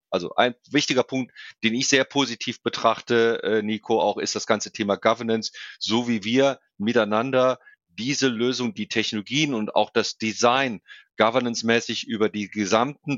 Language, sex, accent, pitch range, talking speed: German, male, German, 105-125 Hz, 145 wpm